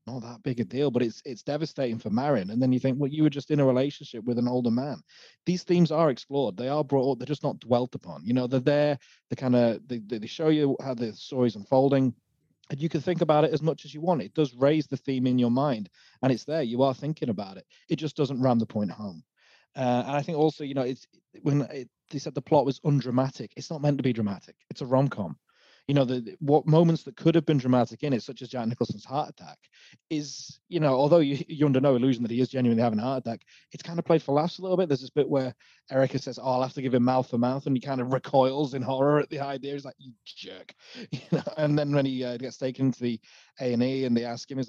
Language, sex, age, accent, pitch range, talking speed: English, male, 30-49, British, 125-150 Hz, 275 wpm